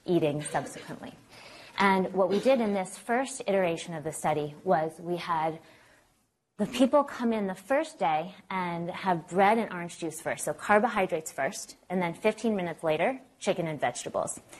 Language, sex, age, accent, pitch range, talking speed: English, female, 20-39, American, 165-205 Hz, 170 wpm